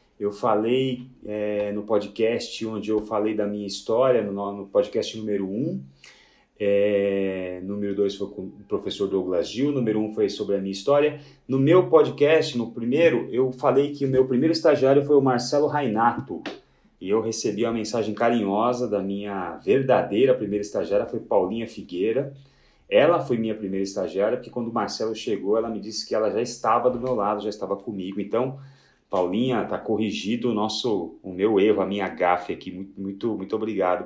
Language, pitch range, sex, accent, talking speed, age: Portuguese, 100-130 Hz, male, Brazilian, 175 wpm, 30-49